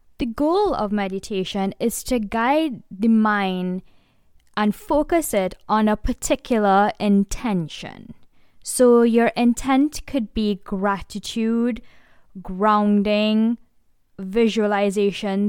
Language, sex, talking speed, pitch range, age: English, female, 95 wpm, 200-250 Hz, 10-29